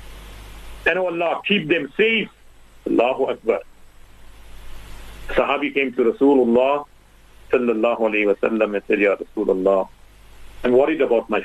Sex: male